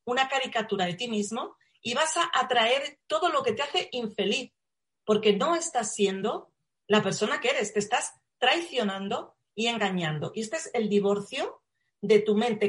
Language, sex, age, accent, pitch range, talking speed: Spanish, female, 40-59, Spanish, 200-270 Hz, 170 wpm